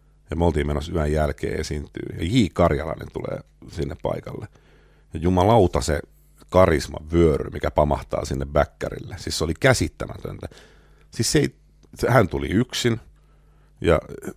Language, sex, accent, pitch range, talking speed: Finnish, male, native, 75-95 Hz, 140 wpm